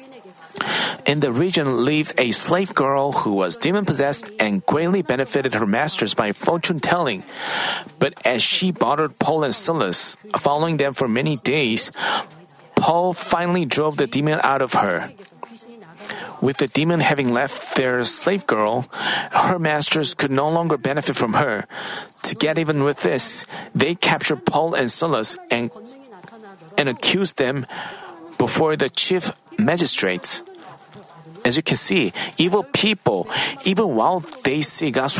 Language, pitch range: Korean, 140-185 Hz